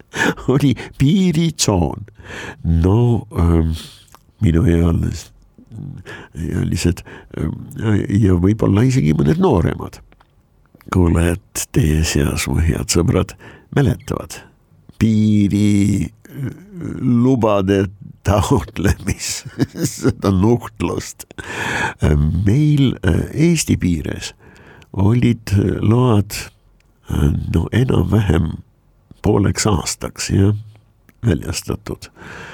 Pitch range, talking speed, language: 85-115 Hz, 70 wpm, English